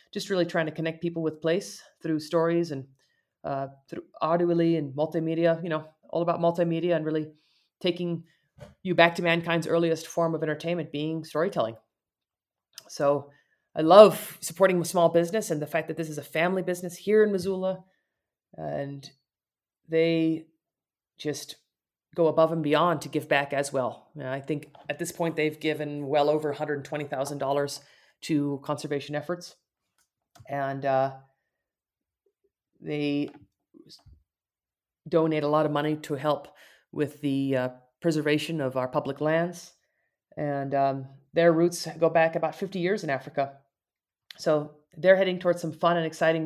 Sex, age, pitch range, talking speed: female, 30-49, 145-175 Hz, 145 wpm